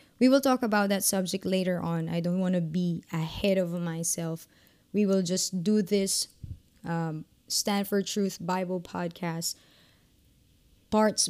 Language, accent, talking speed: English, Filipino, 145 wpm